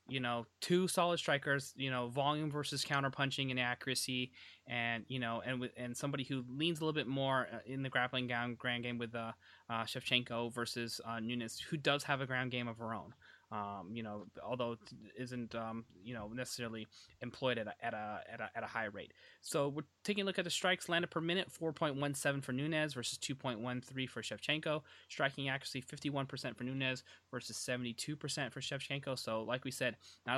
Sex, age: male, 20-39